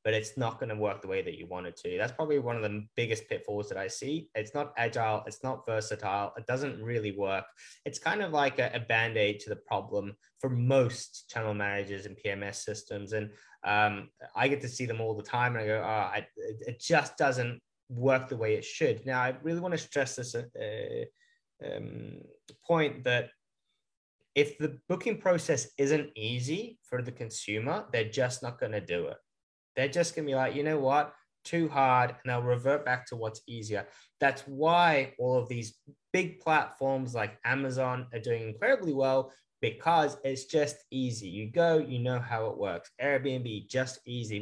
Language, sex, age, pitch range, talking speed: English, male, 20-39, 115-170 Hz, 195 wpm